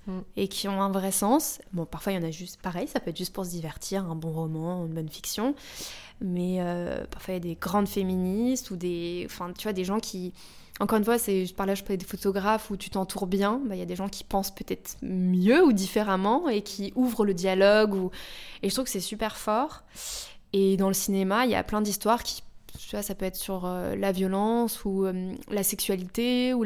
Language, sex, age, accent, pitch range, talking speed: French, female, 20-39, French, 190-225 Hz, 245 wpm